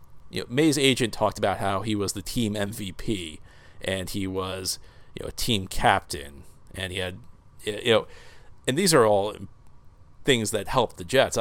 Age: 40-59